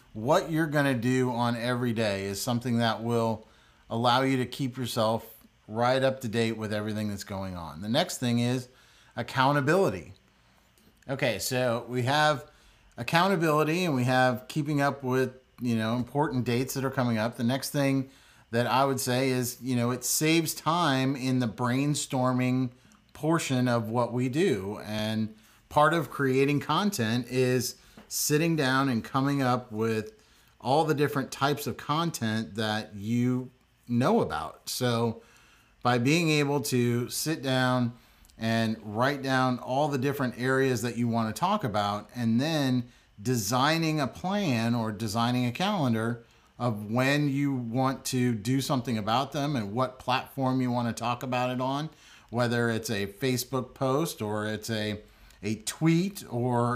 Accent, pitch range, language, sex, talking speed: American, 115-135 Hz, English, male, 160 wpm